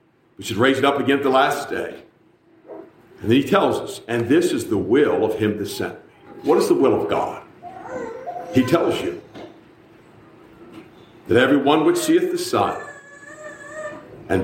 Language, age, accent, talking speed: English, 50-69, American, 170 wpm